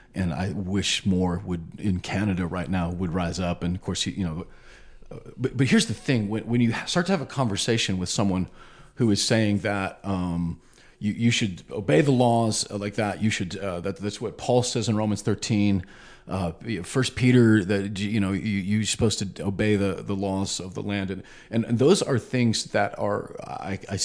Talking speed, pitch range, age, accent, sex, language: 205 wpm, 95-115 Hz, 40-59, American, male, English